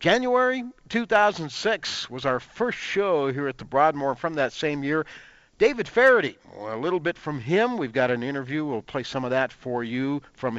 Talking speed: 185 wpm